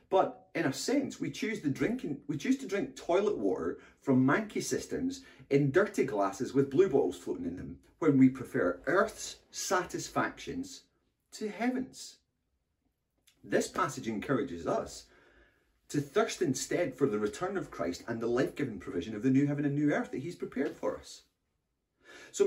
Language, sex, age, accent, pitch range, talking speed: English, male, 30-49, British, 120-190 Hz, 160 wpm